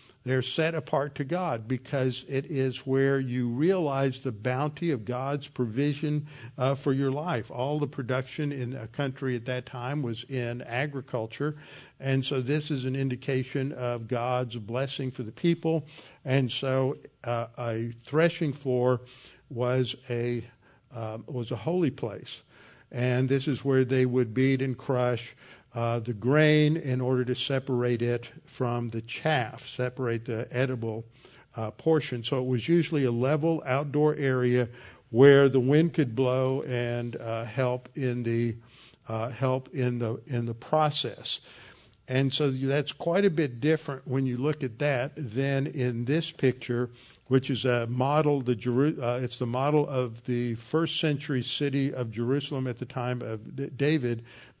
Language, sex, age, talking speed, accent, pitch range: English, male, 60-79, 165 wpm, American, 125-145 Hz